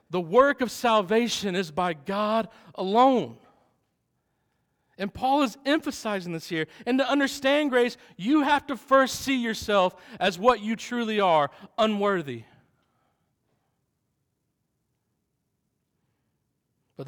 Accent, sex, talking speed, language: American, male, 110 wpm, English